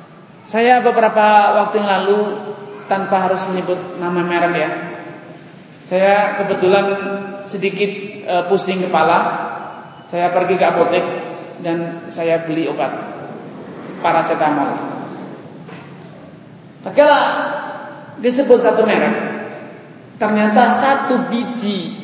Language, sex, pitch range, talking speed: Malay, male, 185-225 Hz, 90 wpm